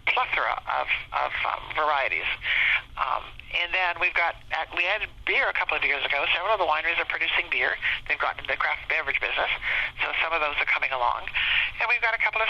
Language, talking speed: English, 220 wpm